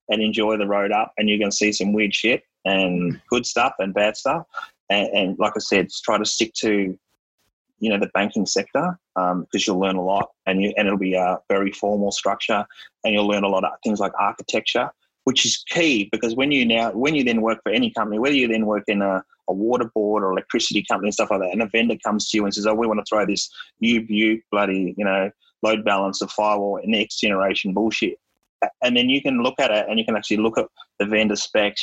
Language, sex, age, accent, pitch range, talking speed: English, male, 20-39, Australian, 100-115 Hz, 240 wpm